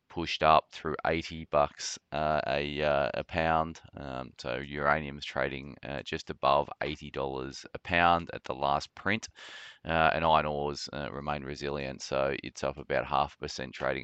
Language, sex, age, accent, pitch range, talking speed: English, male, 20-39, Australian, 70-80 Hz, 175 wpm